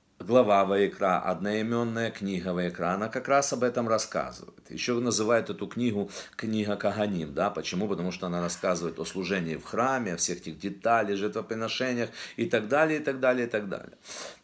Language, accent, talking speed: Russian, native, 170 wpm